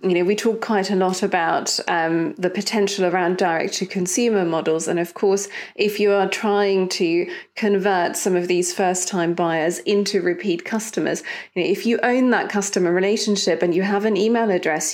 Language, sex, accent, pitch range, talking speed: English, female, British, 175-210 Hz, 195 wpm